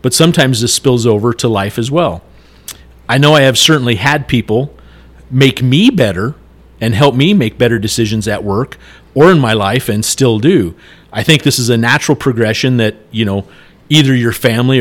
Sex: male